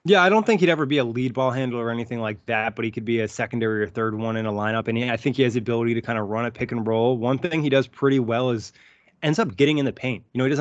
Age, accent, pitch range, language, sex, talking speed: 20-39, American, 115-135 Hz, English, male, 335 wpm